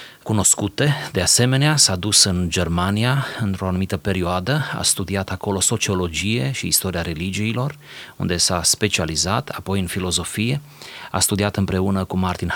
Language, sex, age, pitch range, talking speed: Romanian, male, 30-49, 90-115 Hz, 135 wpm